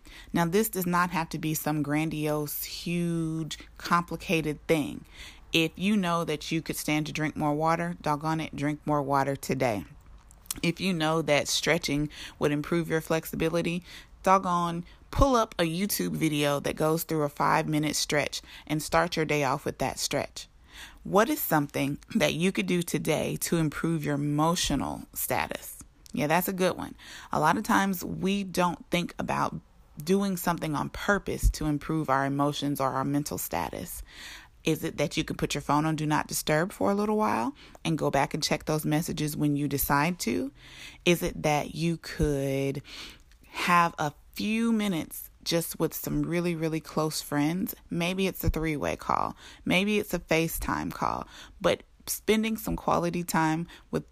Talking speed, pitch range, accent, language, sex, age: 175 wpm, 150-175 Hz, American, English, female, 30-49